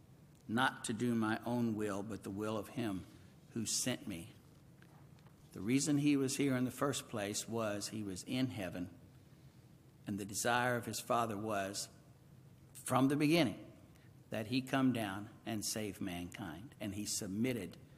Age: 60-79